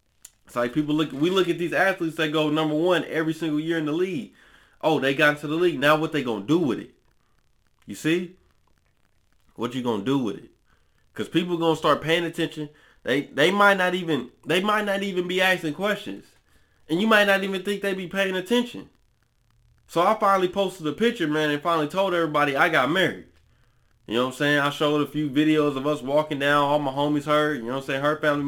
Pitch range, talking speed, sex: 150-195 Hz, 230 wpm, male